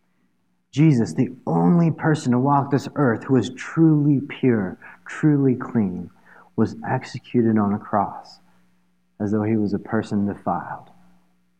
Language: English